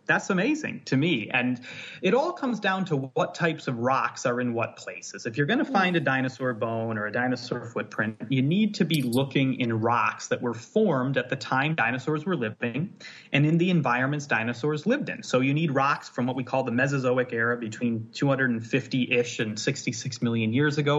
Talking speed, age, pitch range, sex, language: 205 wpm, 30-49, 125-165 Hz, male, English